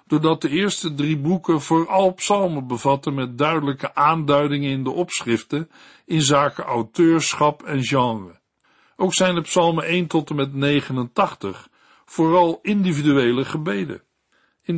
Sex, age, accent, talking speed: male, 60-79, Dutch, 130 wpm